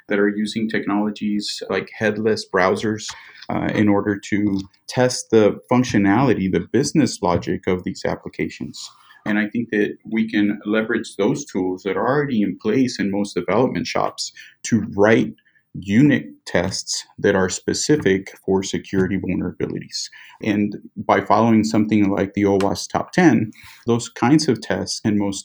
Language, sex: English, male